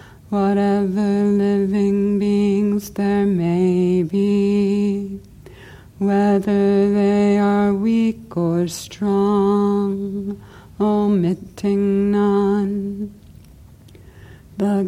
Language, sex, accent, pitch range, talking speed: English, female, American, 195-205 Hz, 60 wpm